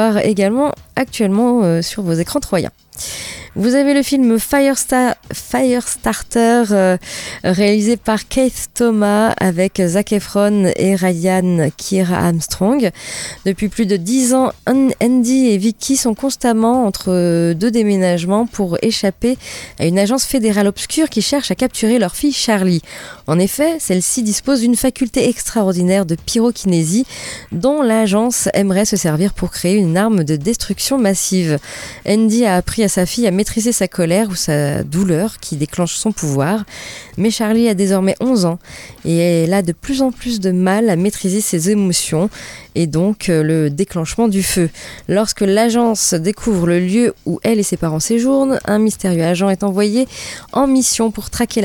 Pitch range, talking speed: 180-235 Hz, 155 wpm